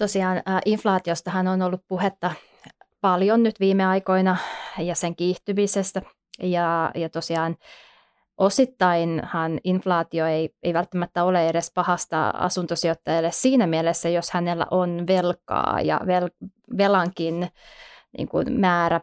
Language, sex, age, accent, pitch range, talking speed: Finnish, female, 20-39, native, 170-190 Hz, 105 wpm